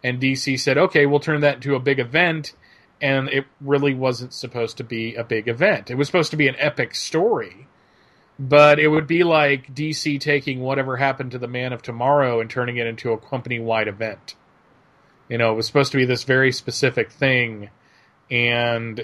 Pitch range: 115-140 Hz